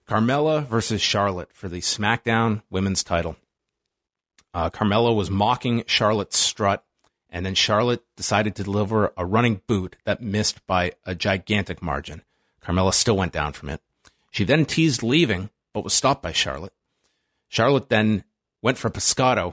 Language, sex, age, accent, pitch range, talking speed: English, male, 30-49, American, 100-140 Hz, 150 wpm